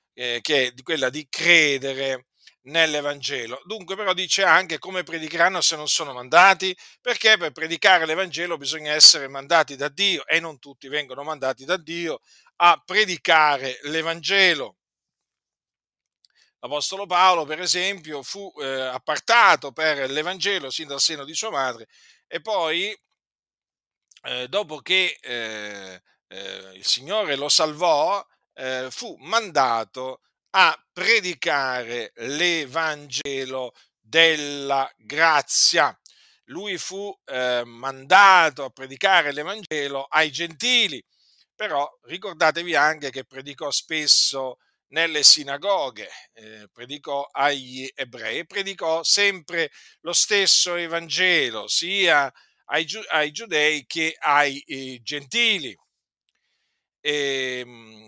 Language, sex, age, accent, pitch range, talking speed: Italian, male, 50-69, native, 135-180 Hz, 110 wpm